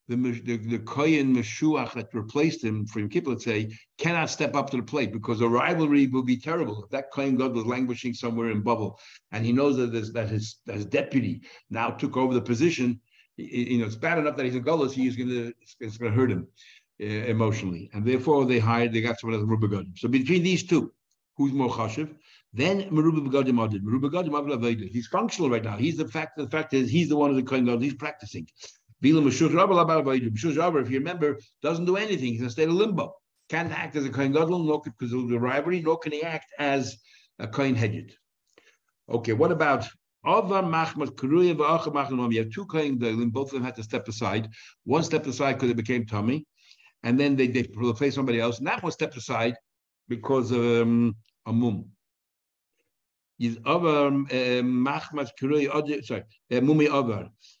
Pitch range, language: 115-150 Hz, English